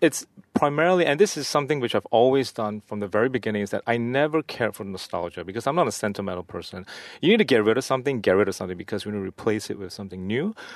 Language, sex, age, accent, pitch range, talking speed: English, male, 30-49, Malaysian, 105-135 Hz, 260 wpm